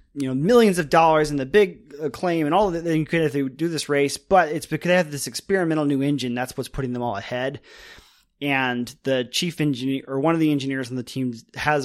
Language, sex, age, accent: English, male, 20-39, American